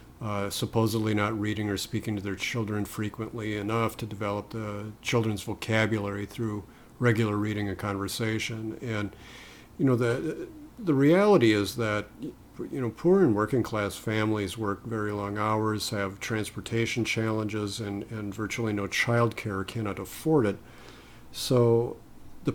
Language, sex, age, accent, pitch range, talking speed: English, male, 50-69, American, 100-120 Hz, 145 wpm